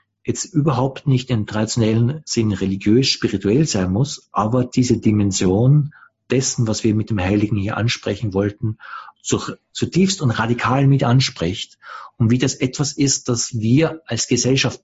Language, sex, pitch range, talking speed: English, male, 105-130 Hz, 140 wpm